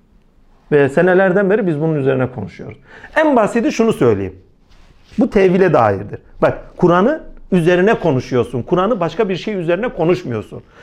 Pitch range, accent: 150-210 Hz, native